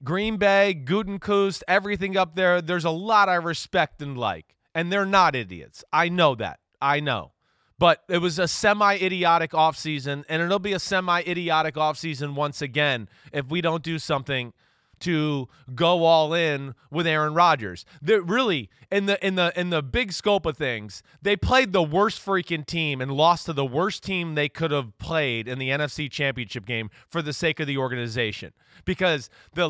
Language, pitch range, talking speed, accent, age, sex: English, 140-185 Hz, 180 wpm, American, 30-49, male